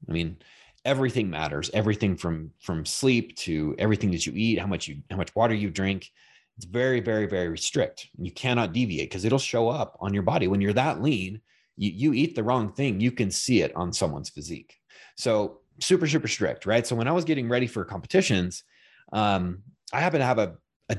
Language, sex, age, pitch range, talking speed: English, male, 30-49, 90-120 Hz, 210 wpm